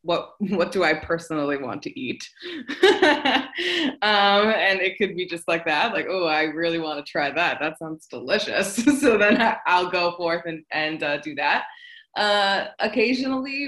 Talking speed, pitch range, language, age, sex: 170 wpm, 155-205 Hz, English, 20-39, female